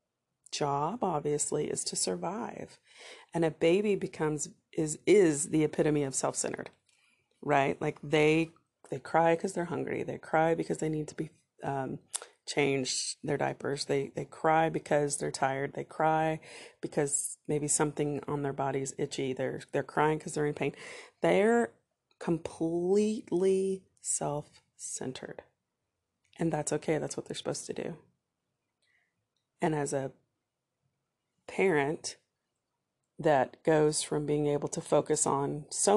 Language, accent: English, American